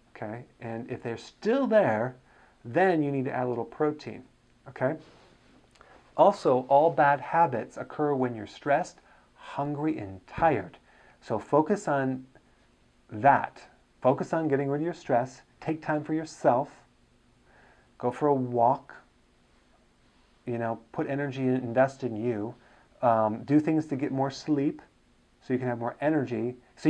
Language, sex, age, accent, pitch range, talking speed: English, male, 30-49, American, 120-150 Hz, 150 wpm